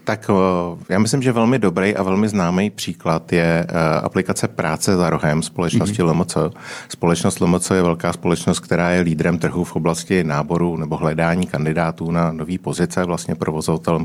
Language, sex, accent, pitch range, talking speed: Czech, male, native, 80-95 Hz, 160 wpm